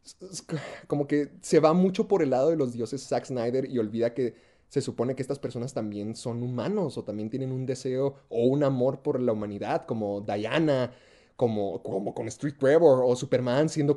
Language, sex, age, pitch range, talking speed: Spanish, male, 30-49, 125-155 Hz, 195 wpm